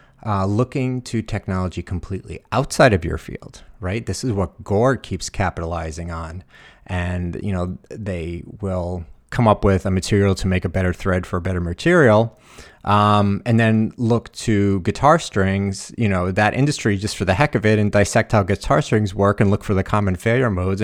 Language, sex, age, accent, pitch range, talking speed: English, male, 30-49, American, 95-115 Hz, 190 wpm